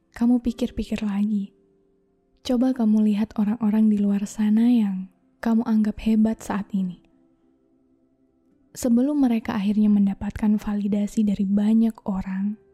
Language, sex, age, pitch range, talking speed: Indonesian, female, 10-29, 195-230 Hz, 115 wpm